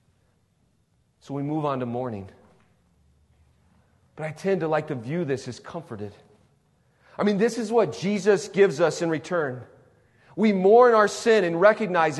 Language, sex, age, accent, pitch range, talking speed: English, male, 40-59, American, 145-210 Hz, 155 wpm